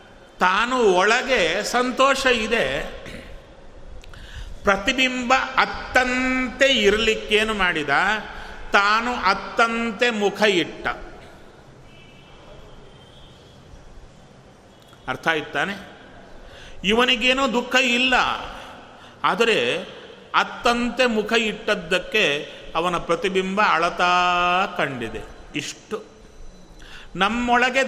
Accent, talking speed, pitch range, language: native, 60 wpm, 180-240 Hz, Kannada